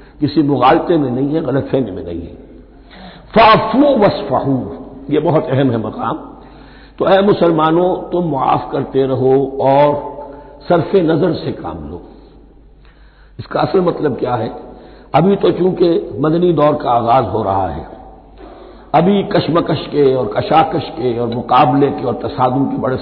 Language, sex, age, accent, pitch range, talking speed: Hindi, male, 60-79, native, 140-180 Hz, 150 wpm